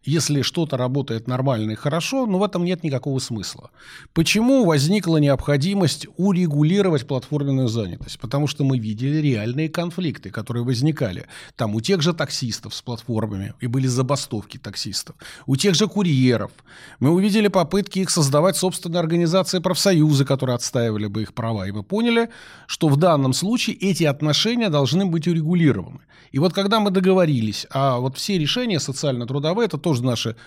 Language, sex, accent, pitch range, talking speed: Russian, male, native, 130-180 Hz, 155 wpm